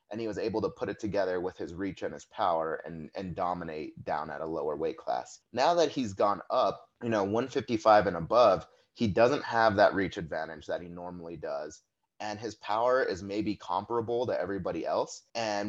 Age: 30-49